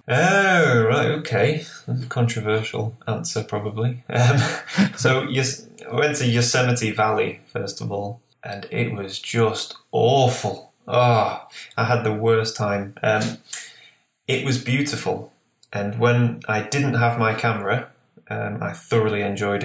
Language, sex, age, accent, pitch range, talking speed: English, male, 20-39, British, 110-125 Hz, 135 wpm